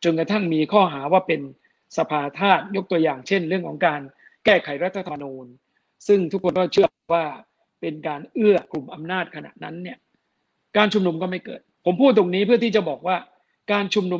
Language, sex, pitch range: Thai, male, 155-190 Hz